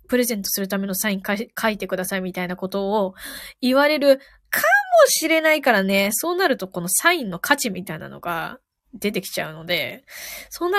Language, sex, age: Japanese, female, 20-39